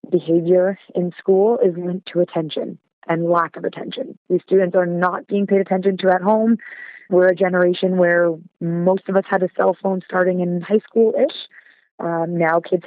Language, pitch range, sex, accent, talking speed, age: English, 170-195 Hz, female, American, 180 wpm, 30-49